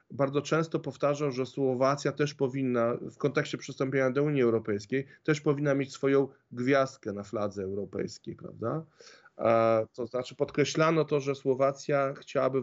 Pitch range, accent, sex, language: 125-145 Hz, native, male, Polish